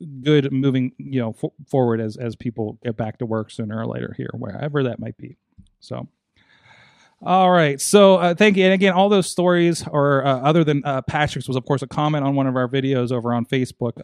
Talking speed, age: 220 wpm, 30-49